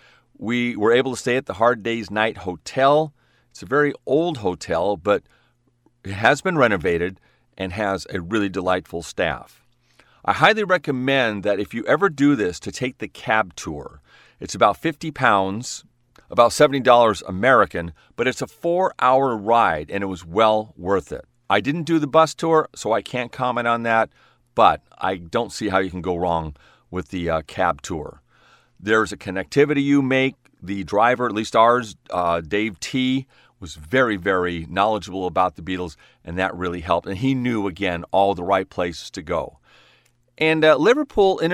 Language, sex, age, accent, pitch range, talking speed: English, male, 40-59, American, 95-130 Hz, 180 wpm